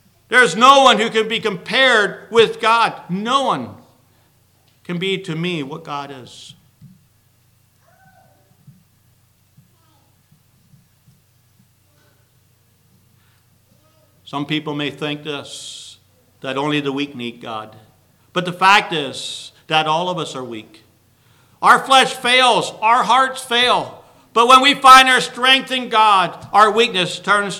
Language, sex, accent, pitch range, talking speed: English, male, American, 120-180 Hz, 120 wpm